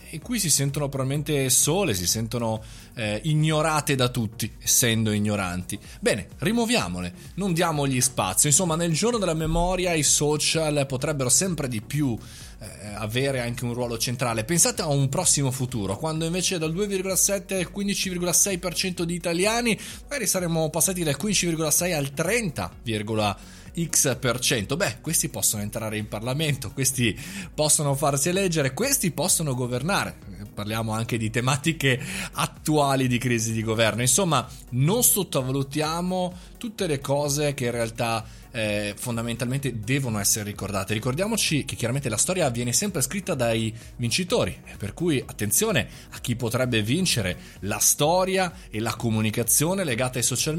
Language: Italian